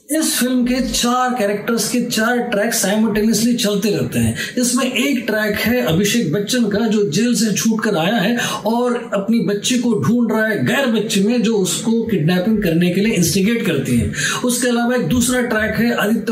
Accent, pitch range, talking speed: native, 205-240 Hz, 190 wpm